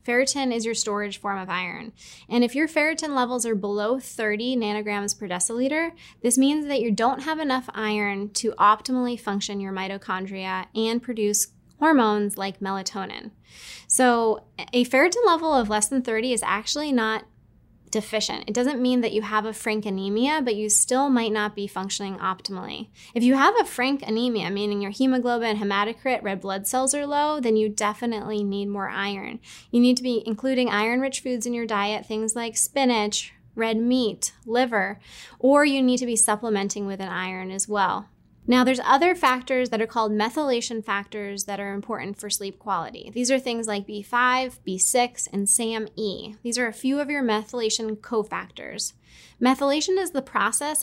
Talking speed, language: 175 wpm, English